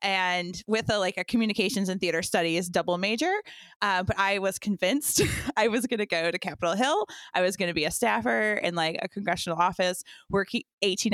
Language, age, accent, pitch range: English, 20-39, American, 170-210 Hz